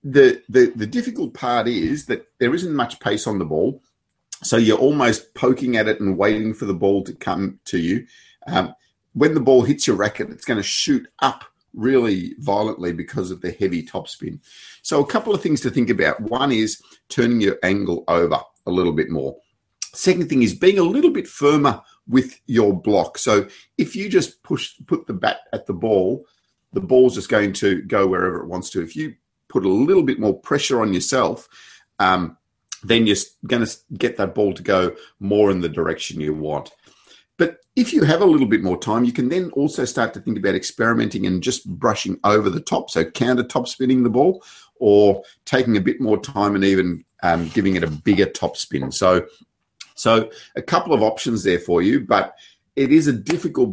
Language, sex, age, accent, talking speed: English, male, 50-69, Australian, 205 wpm